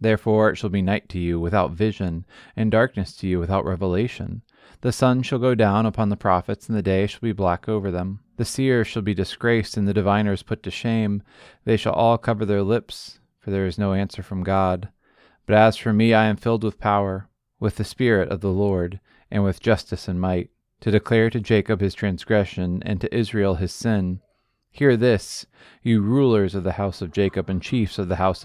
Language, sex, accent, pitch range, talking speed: English, male, American, 95-110 Hz, 210 wpm